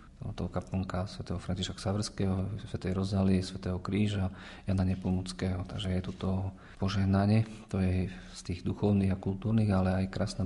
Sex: male